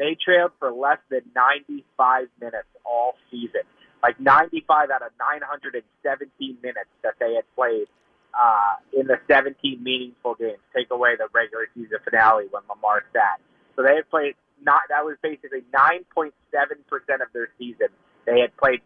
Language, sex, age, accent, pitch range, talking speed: English, male, 30-49, American, 135-170 Hz, 160 wpm